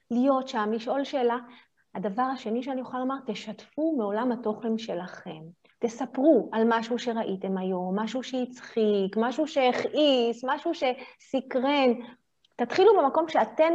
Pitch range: 215-315 Hz